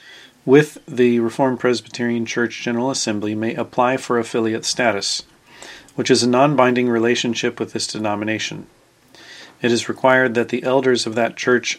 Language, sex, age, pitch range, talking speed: English, male, 40-59, 115-130 Hz, 150 wpm